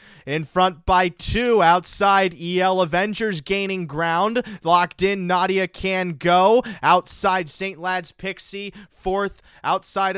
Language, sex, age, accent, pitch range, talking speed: English, male, 20-39, American, 180-215 Hz, 120 wpm